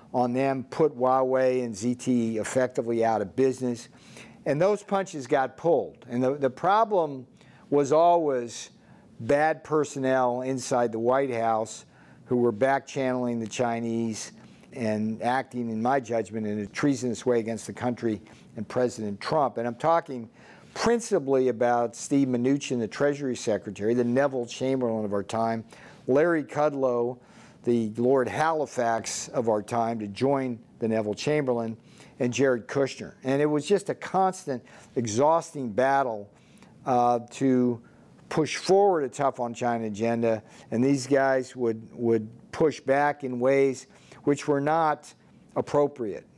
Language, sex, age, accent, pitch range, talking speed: English, male, 50-69, American, 115-140 Hz, 140 wpm